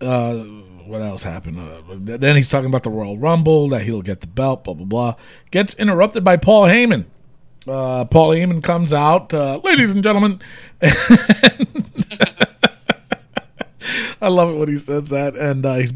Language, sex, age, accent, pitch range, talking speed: English, male, 40-59, American, 120-175 Hz, 165 wpm